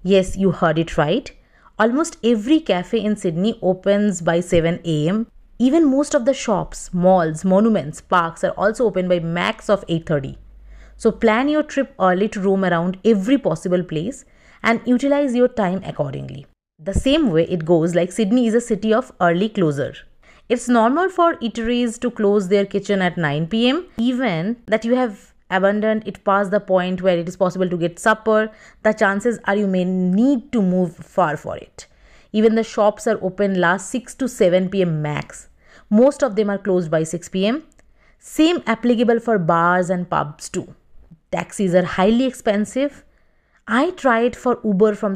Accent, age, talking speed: native, 30-49, 175 wpm